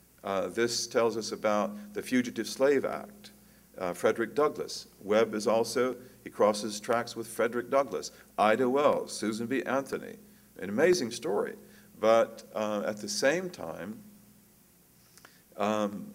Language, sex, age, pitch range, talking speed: English, male, 50-69, 105-135 Hz, 135 wpm